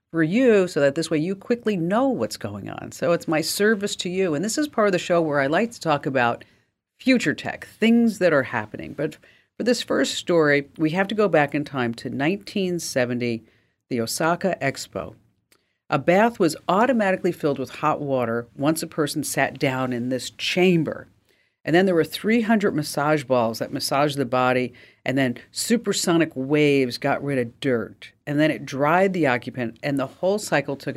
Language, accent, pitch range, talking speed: English, American, 130-180 Hz, 195 wpm